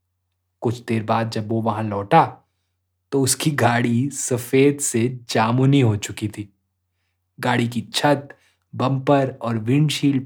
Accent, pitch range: native, 95-135 Hz